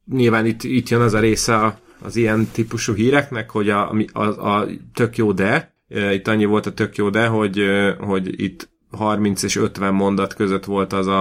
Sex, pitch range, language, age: male, 95-105 Hz, Hungarian, 30-49